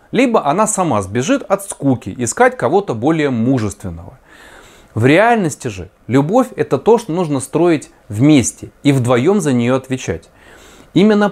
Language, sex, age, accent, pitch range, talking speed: Russian, male, 30-49, native, 125-200 Hz, 140 wpm